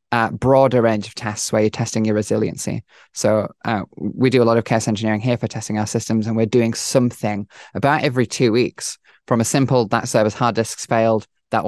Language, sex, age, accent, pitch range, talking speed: English, male, 20-39, British, 110-125 Hz, 210 wpm